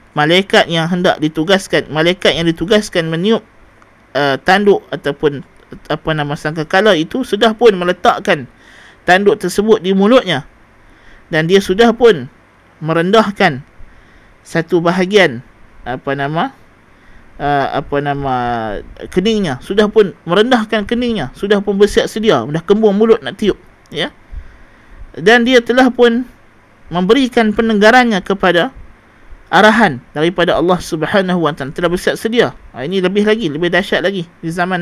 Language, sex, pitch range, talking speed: Malay, male, 145-200 Hz, 120 wpm